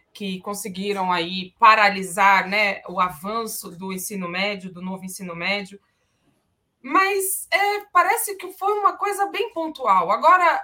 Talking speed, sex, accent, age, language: 135 wpm, female, Brazilian, 20-39, Portuguese